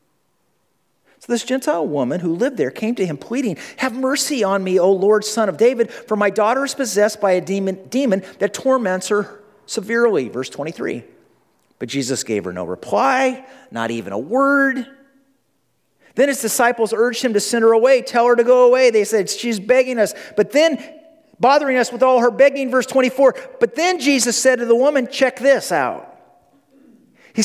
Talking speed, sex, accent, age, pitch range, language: 185 wpm, male, American, 40-59, 190-260 Hz, English